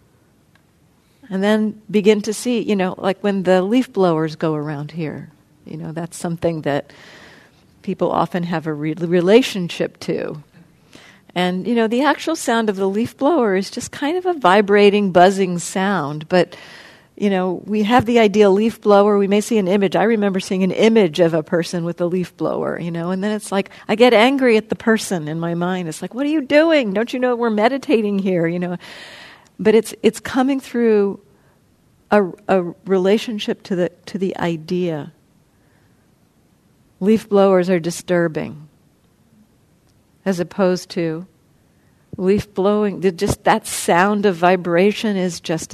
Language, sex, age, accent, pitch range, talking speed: English, female, 50-69, American, 170-215 Hz, 170 wpm